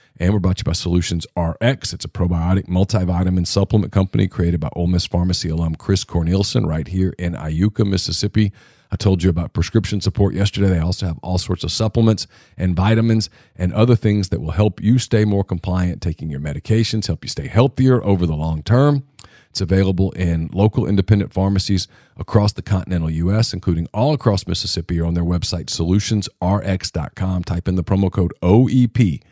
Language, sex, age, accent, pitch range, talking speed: English, male, 40-59, American, 90-110 Hz, 180 wpm